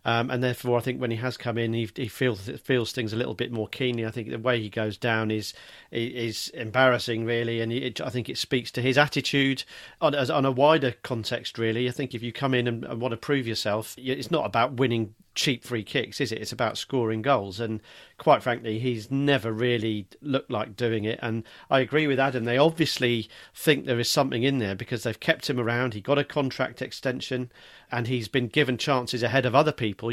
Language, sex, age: English, male, 40-59